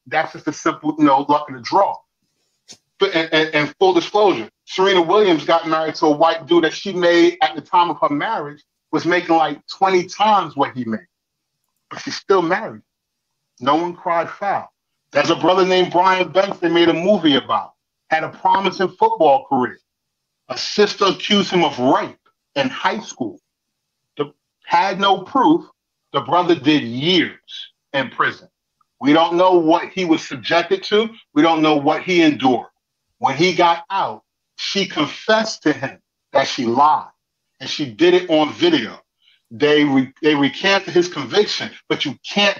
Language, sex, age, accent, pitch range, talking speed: English, male, 40-59, American, 150-195 Hz, 175 wpm